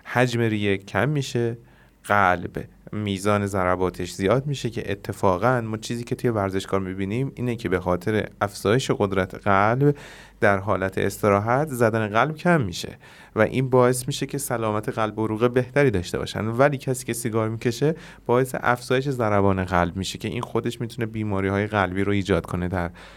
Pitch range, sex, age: 100-125 Hz, male, 30-49